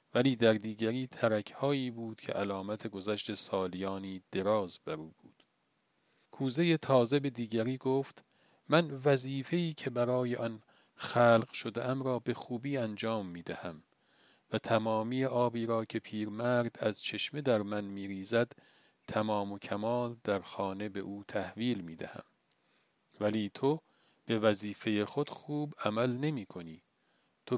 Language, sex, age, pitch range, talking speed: Persian, male, 40-59, 105-130 Hz, 135 wpm